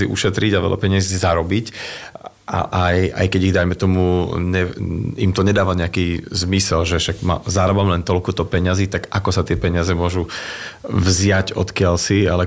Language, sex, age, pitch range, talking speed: Slovak, male, 30-49, 90-100 Hz, 170 wpm